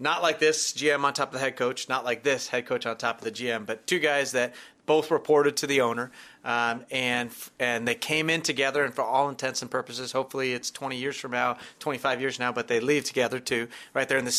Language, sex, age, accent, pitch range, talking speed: English, male, 30-49, American, 120-140 Hz, 250 wpm